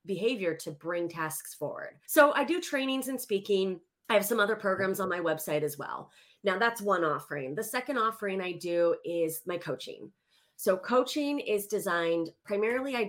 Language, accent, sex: English, American, female